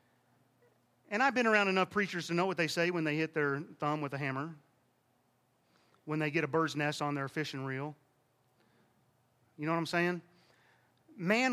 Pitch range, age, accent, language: 140-225 Hz, 40-59, American, English